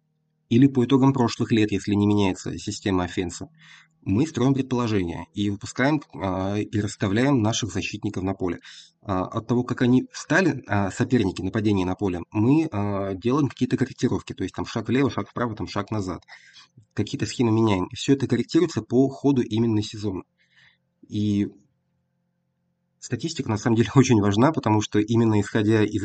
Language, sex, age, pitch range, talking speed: Russian, male, 30-49, 100-125 Hz, 150 wpm